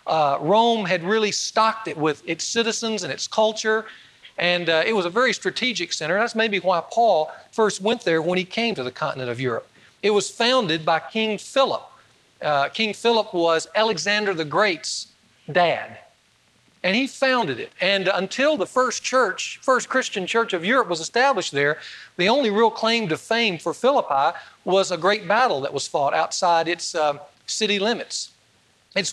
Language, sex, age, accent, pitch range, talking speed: English, male, 40-59, American, 155-210 Hz, 180 wpm